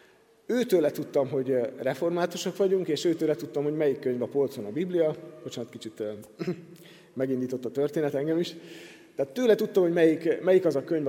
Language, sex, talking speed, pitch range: Hungarian, male, 180 wpm, 140-180 Hz